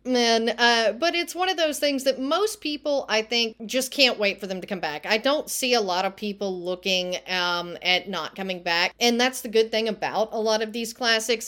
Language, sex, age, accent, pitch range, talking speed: English, female, 40-59, American, 195-240 Hz, 235 wpm